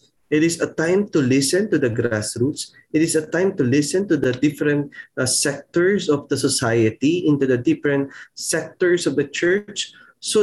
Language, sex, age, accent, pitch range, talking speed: Filipino, male, 20-39, native, 140-190 Hz, 180 wpm